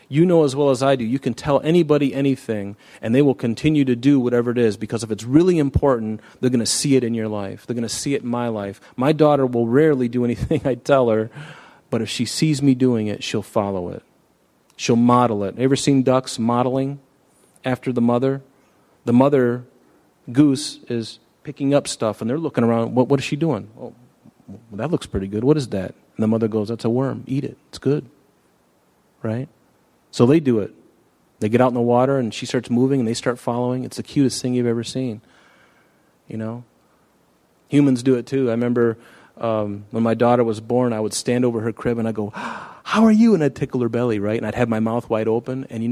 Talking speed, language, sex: 225 wpm, English, male